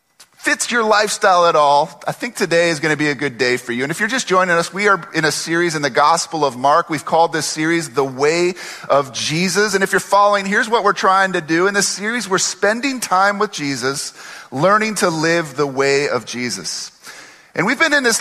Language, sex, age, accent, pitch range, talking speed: English, male, 30-49, American, 160-215 Hz, 235 wpm